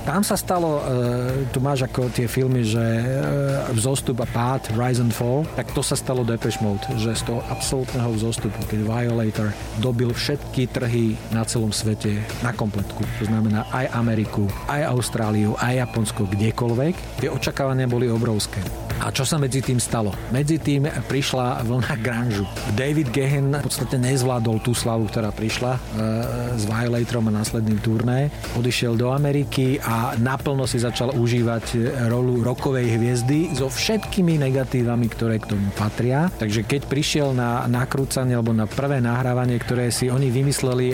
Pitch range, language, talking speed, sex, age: 115-135 Hz, Slovak, 160 wpm, male, 40-59